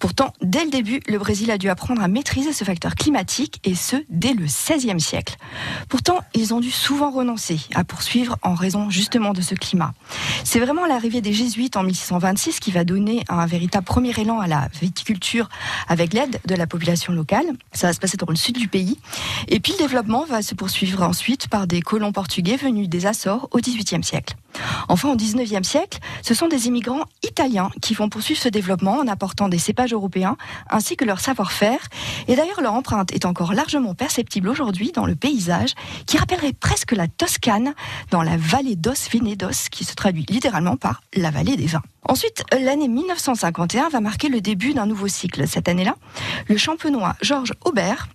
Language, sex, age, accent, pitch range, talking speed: French, female, 40-59, French, 190-265 Hz, 190 wpm